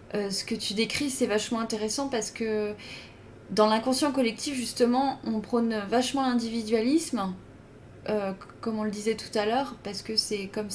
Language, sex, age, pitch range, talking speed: French, female, 20-39, 200-240 Hz, 175 wpm